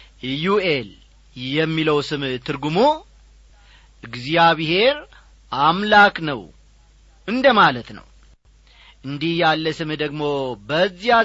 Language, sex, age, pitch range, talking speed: Amharic, male, 40-59, 150-240 Hz, 75 wpm